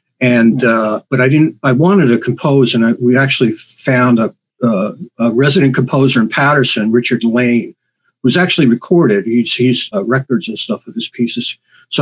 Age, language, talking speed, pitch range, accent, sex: 50-69, English, 180 wpm, 120-160 Hz, American, male